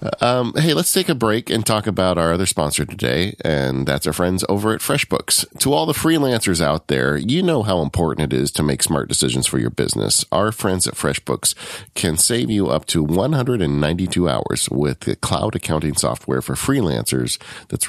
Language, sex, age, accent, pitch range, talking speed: English, male, 40-59, American, 75-100 Hz, 195 wpm